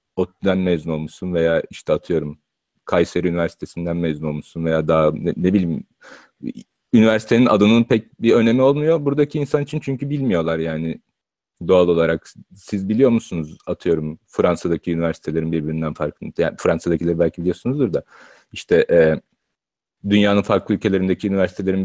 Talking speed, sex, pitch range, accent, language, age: 130 wpm, male, 85-105 Hz, native, Turkish, 40-59